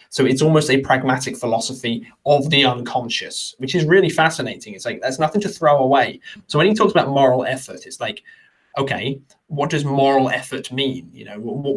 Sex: male